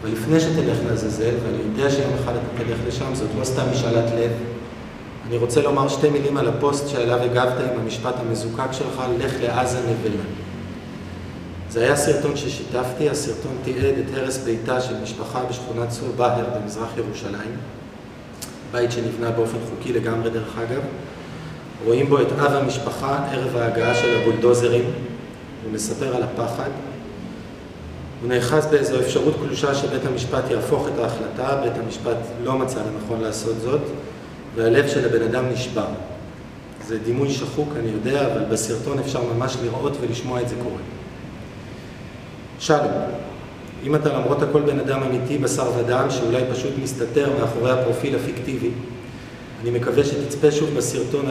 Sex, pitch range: male, 115-135 Hz